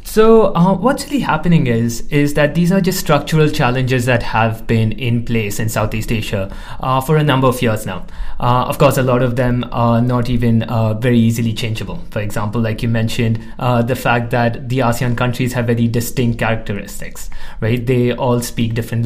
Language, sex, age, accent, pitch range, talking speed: English, male, 30-49, Indian, 115-130 Hz, 200 wpm